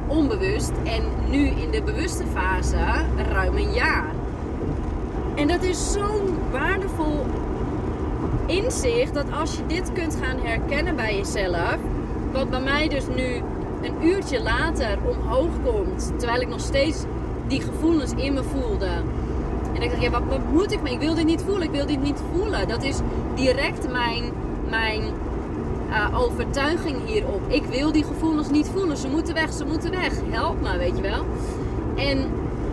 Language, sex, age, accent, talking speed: Dutch, female, 30-49, Dutch, 160 wpm